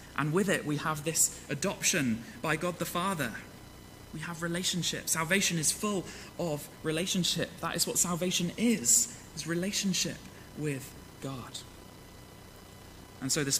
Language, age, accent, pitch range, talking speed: English, 20-39, British, 115-155 Hz, 135 wpm